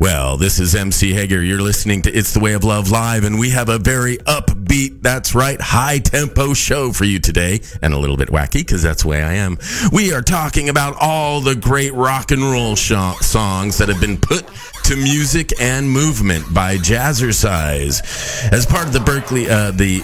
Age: 40-59